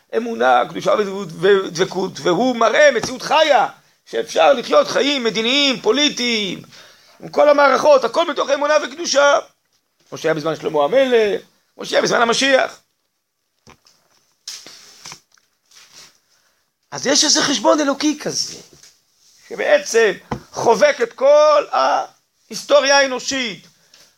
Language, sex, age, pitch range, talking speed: Hebrew, male, 40-59, 235-295 Hz, 100 wpm